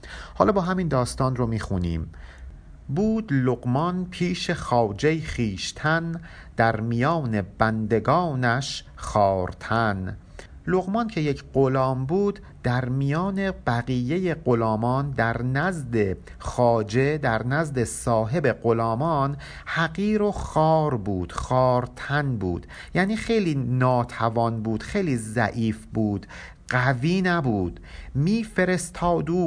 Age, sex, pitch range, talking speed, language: 50-69, male, 110-160 Hz, 100 wpm, Persian